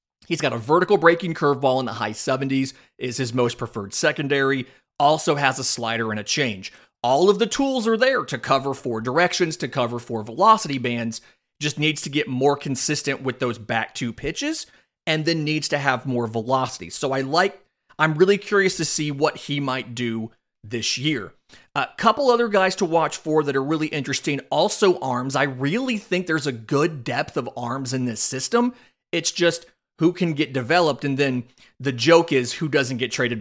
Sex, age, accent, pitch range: male, 30-49, American, 120-160 Hz